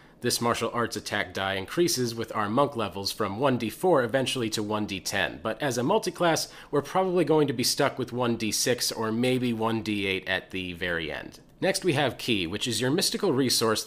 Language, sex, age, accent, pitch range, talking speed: English, male, 30-49, American, 100-130 Hz, 185 wpm